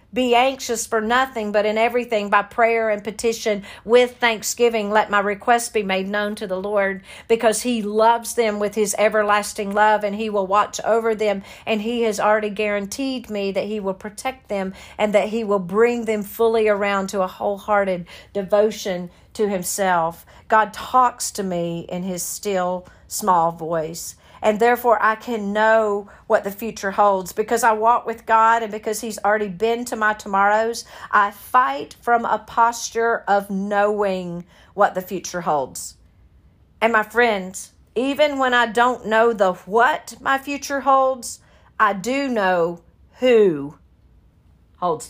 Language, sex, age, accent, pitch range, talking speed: English, female, 50-69, American, 190-230 Hz, 160 wpm